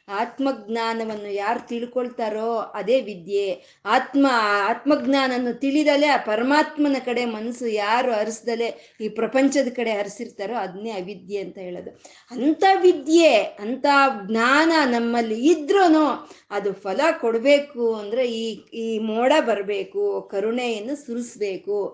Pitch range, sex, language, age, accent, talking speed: 220-285 Hz, female, Kannada, 20-39, native, 100 wpm